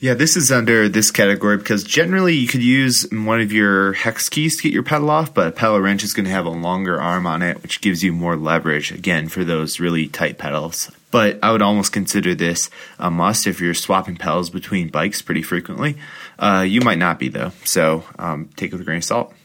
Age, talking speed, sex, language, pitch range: 20-39, 235 wpm, male, English, 90-110 Hz